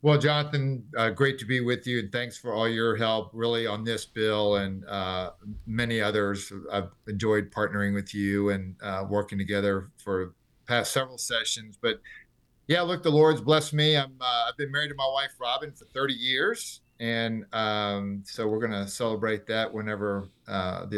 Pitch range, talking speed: 105-125 Hz, 185 wpm